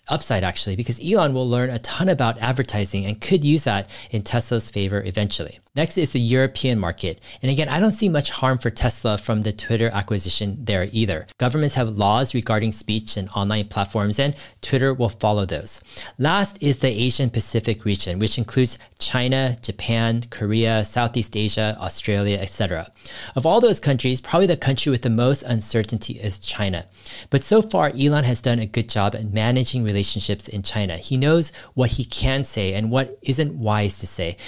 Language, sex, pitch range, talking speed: English, male, 105-140 Hz, 185 wpm